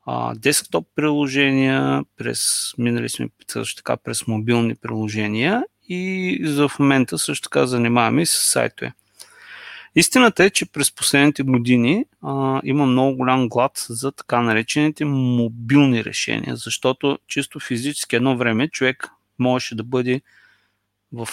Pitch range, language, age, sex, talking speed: 115-145 Hz, Bulgarian, 30-49, male, 125 wpm